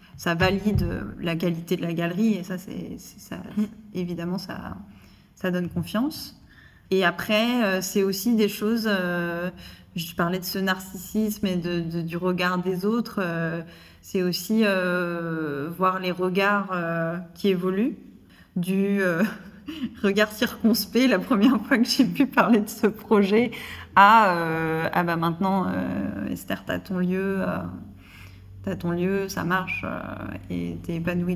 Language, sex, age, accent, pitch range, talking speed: French, female, 20-39, French, 170-210 Hz, 155 wpm